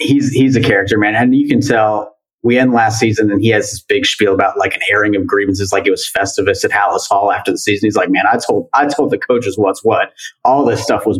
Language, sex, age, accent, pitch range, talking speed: English, male, 30-49, American, 105-125 Hz, 270 wpm